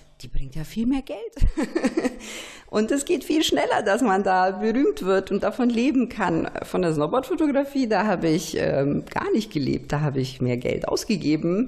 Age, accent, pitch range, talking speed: 50-69, German, 150-210 Hz, 190 wpm